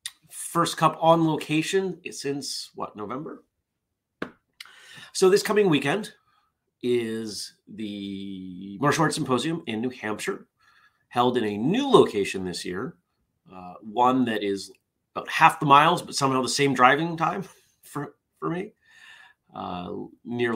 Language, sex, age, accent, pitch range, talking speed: English, male, 30-49, American, 100-150 Hz, 135 wpm